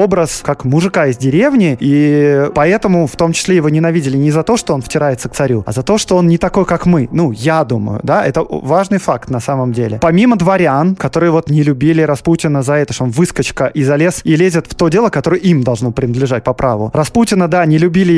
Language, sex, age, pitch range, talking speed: Russian, male, 20-39, 140-180 Hz, 225 wpm